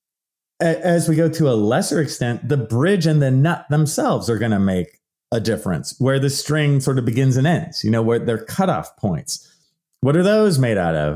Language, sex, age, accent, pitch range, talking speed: English, male, 30-49, American, 100-155 Hz, 210 wpm